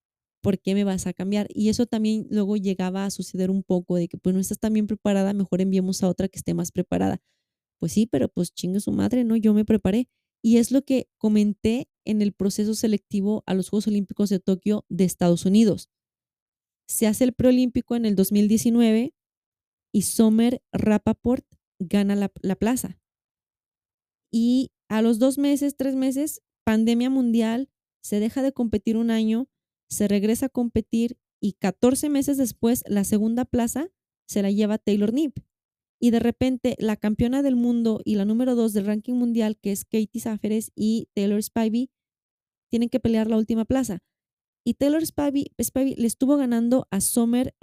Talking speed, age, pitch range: 180 wpm, 20-39, 200-240 Hz